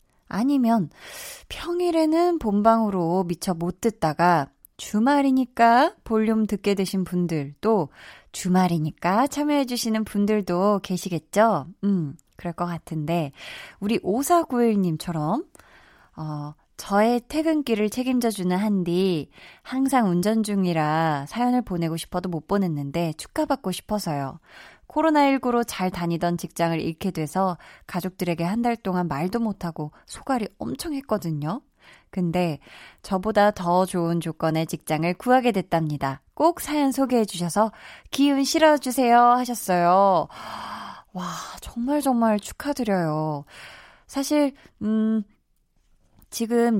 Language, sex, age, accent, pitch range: Korean, female, 20-39, native, 170-245 Hz